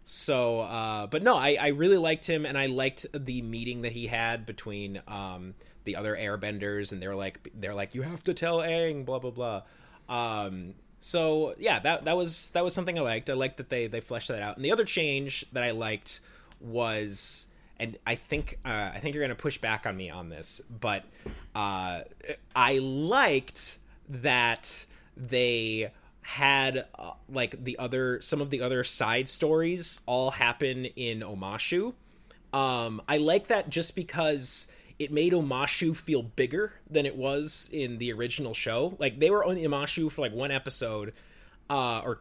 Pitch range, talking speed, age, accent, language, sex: 115-150 Hz, 180 wpm, 20-39, American, English, male